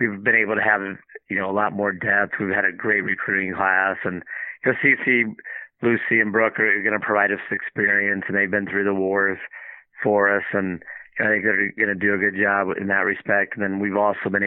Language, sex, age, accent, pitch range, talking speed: English, male, 30-49, American, 95-105 Hz, 230 wpm